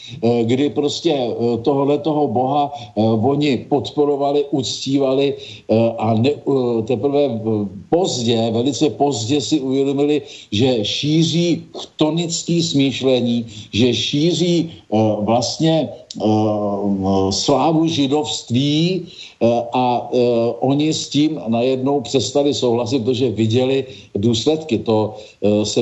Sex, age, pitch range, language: male, 50-69, 110-130 Hz, Slovak